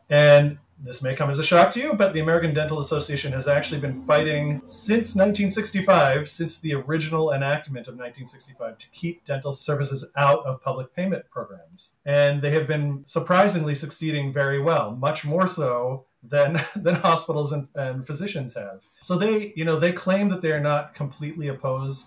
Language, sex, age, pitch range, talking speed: English, male, 40-59, 130-160 Hz, 175 wpm